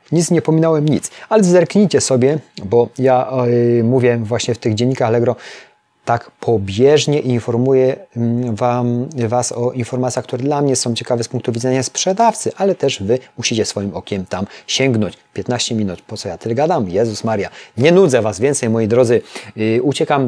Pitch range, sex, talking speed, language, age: 105-130 Hz, male, 165 wpm, Polish, 30-49